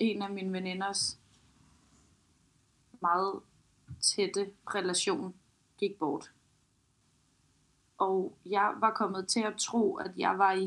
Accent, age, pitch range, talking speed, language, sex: native, 30-49, 185-215 Hz, 110 wpm, Danish, female